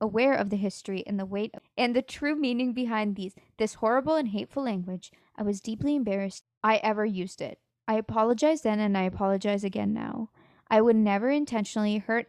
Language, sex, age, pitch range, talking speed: English, female, 20-39, 195-235 Hz, 190 wpm